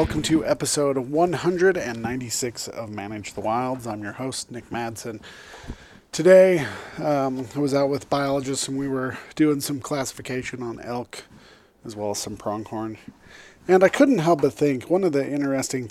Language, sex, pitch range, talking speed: English, male, 120-145 Hz, 160 wpm